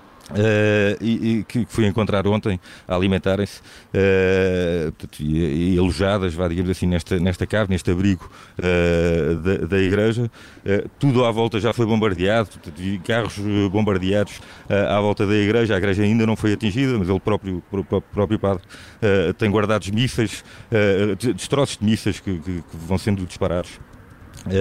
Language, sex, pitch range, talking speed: Portuguese, male, 90-110 Hz, 165 wpm